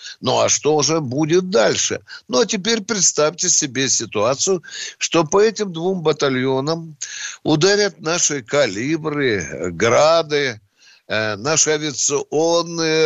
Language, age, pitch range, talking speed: Russian, 60-79, 140-195 Hz, 105 wpm